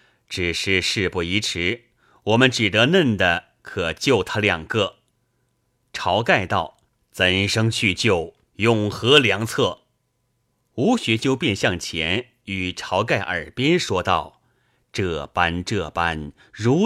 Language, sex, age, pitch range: Chinese, male, 30-49, 95-135 Hz